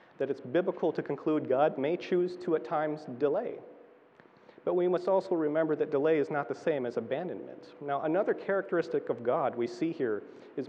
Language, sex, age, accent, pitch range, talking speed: English, male, 40-59, American, 145-200 Hz, 190 wpm